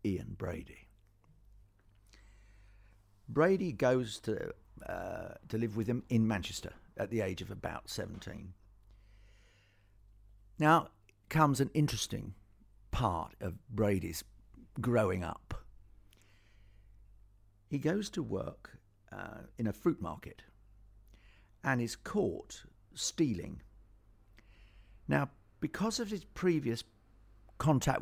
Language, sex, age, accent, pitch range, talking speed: English, male, 60-79, British, 100-120 Hz, 100 wpm